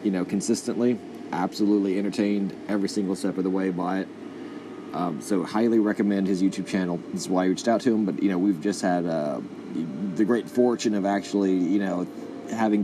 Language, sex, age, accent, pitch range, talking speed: English, male, 30-49, American, 95-105 Hz, 200 wpm